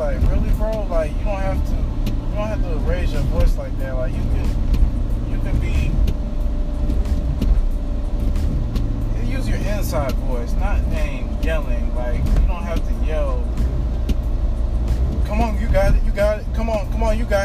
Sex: male